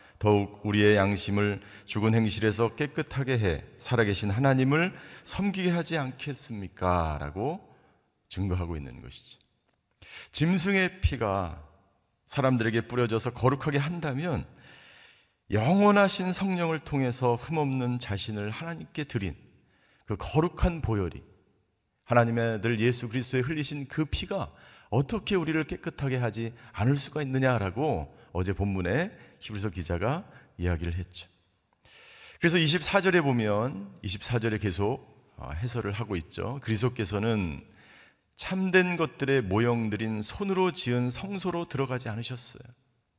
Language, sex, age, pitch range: Korean, male, 40-59, 105-150 Hz